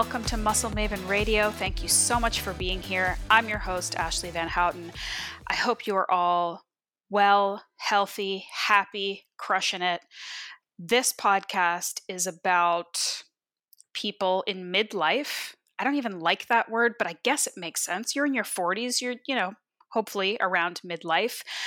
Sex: female